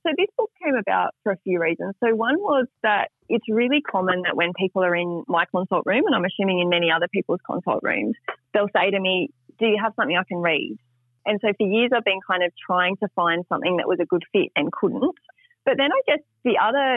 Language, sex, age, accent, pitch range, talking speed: English, female, 30-49, Australian, 175-215 Hz, 245 wpm